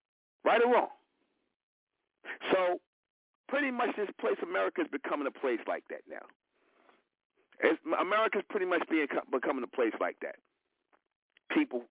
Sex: male